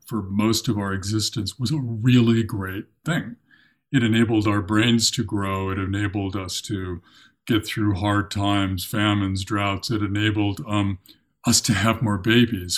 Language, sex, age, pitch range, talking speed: English, male, 50-69, 100-130 Hz, 160 wpm